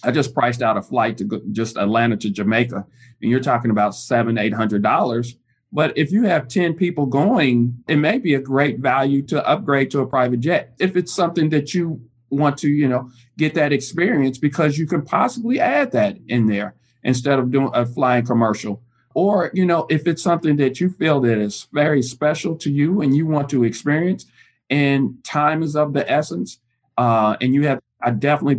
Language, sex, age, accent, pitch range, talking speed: English, male, 40-59, American, 120-145 Hz, 200 wpm